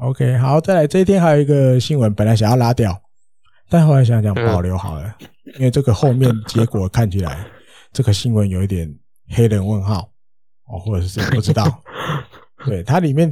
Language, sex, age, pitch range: Chinese, male, 20-39, 105-130 Hz